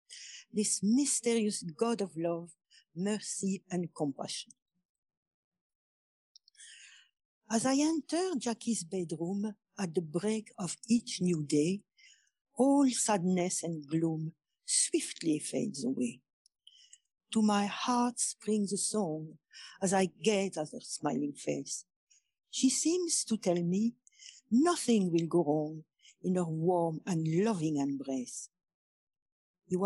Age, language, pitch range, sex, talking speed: 60-79, English, 170-245 Hz, female, 115 wpm